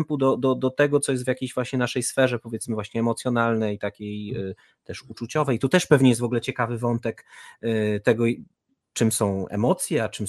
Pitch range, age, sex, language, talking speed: 110-140 Hz, 30-49, male, Polish, 200 wpm